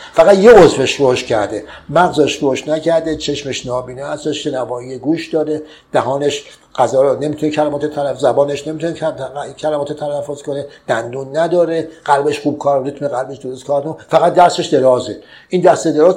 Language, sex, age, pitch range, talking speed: Persian, male, 60-79, 135-170 Hz, 145 wpm